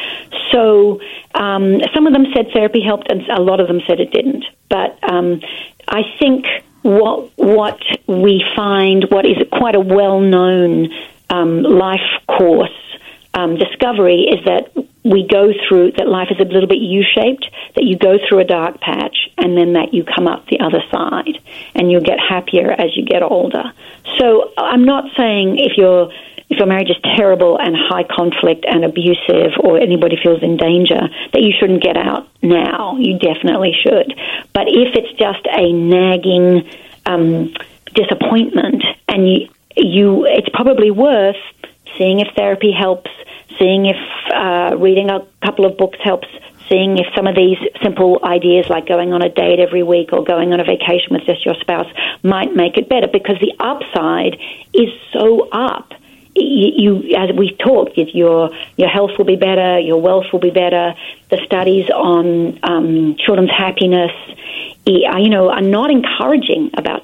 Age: 50-69